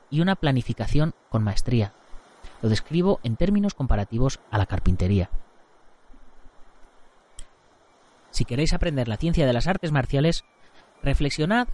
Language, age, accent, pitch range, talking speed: Spanish, 30-49, Spanish, 110-170 Hz, 120 wpm